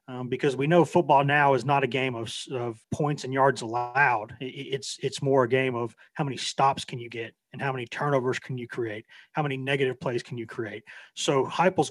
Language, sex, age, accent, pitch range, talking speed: English, male, 30-49, American, 130-160 Hz, 225 wpm